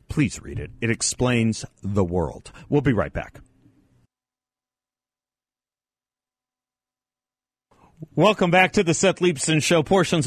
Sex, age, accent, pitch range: male, 40-59, American, 115-155 Hz